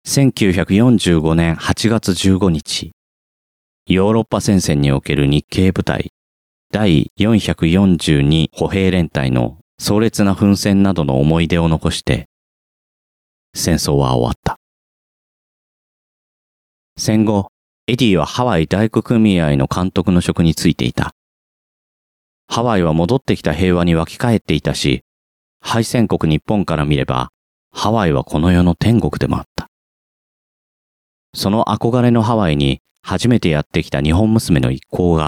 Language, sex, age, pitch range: Japanese, male, 40-59, 75-100 Hz